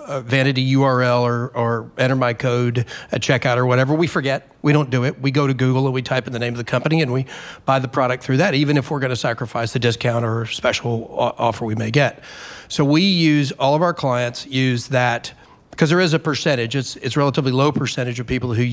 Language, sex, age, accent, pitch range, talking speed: English, male, 40-59, American, 120-145 Hz, 235 wpm